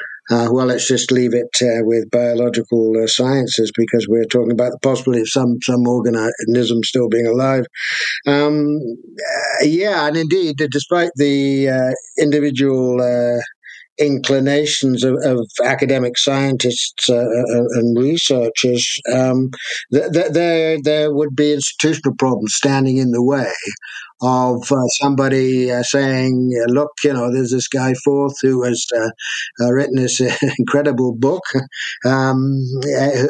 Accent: British